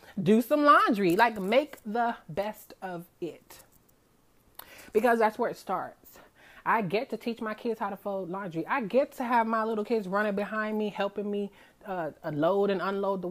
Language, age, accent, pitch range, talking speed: English, 30-49, American, 195-260 Hz, 185 wpm